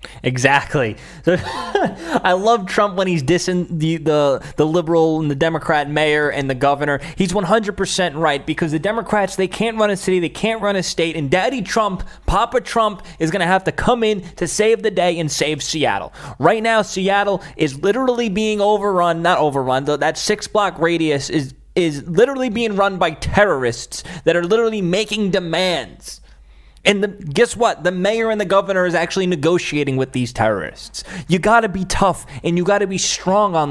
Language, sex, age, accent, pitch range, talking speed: English, male, 20-39, American, 155-210 Hz, 190 wpm